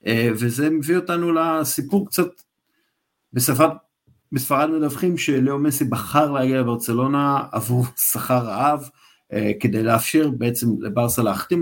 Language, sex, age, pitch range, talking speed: Hebrew, male, 50-69, 125-155 Hz, 105 wpm